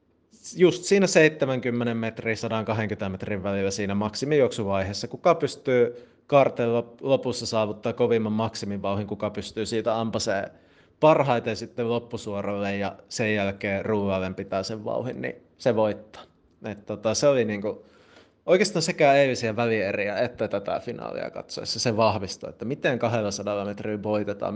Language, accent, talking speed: Finnish, native, 130 wpm